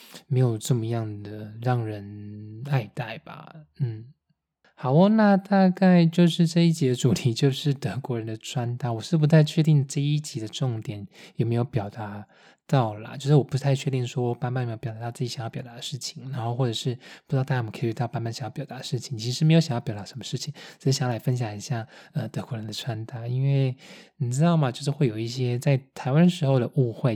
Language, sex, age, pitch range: Chinese, male, 20-39, 115-140 Hz